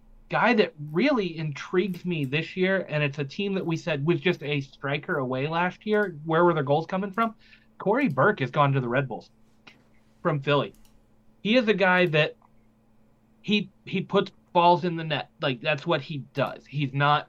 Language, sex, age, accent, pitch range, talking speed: English, male, 30-49, American, 130-180 Hz, 195 wpm